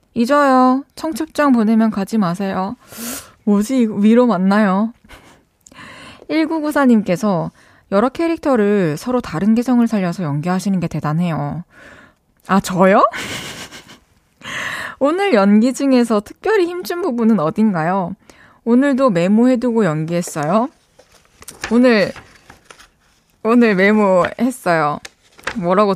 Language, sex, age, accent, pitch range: Korean, female, 20-39, native, 190-275 Hz